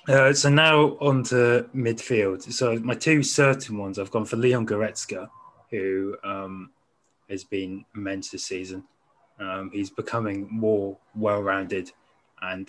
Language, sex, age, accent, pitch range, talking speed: English, male, 20-39, British, 95-115 Hz, 135 wpm